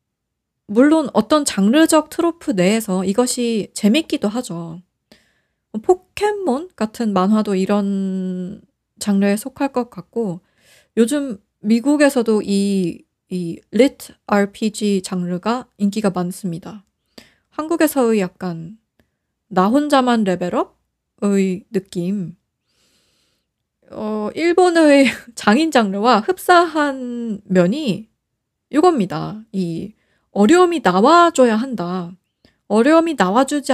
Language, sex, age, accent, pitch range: Korean, female, 20-39, native, 190-275 Hz